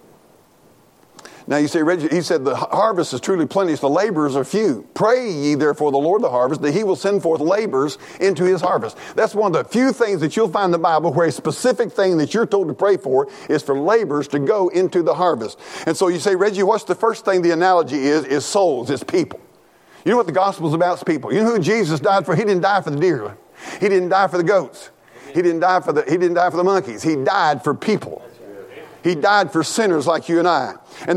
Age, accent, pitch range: 50-69, American, 170-210 Hz